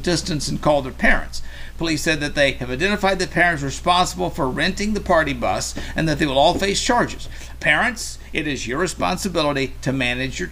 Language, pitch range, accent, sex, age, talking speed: English, 135-195 Hz, American, male, 50-69, 195 wpm